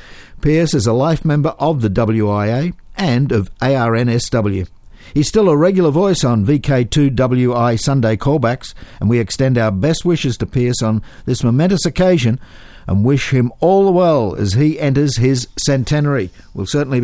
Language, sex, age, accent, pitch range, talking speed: English, male, 50-69, Australian, 110-155 Hz, 160 wpm